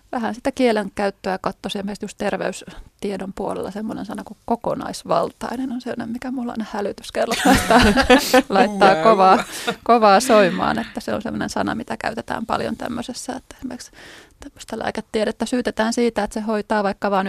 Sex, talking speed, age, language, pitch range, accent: female, 140 wpm, 20-39, Finnish, 195-240 Hz, native